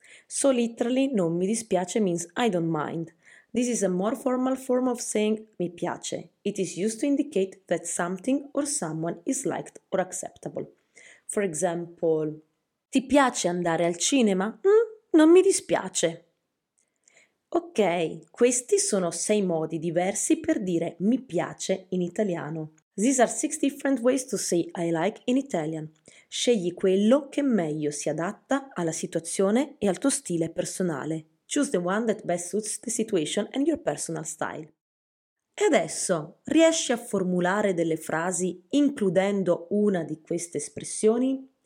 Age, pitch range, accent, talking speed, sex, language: 20-39, 170-250 Hz, Italian, 150 wpm, female, English